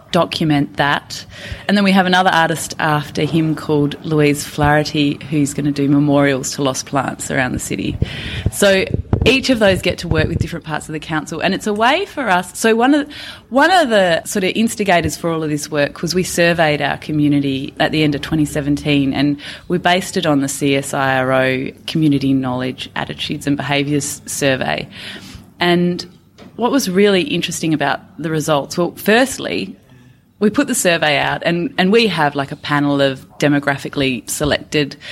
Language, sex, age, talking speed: English, female, 30-49, 180 wpm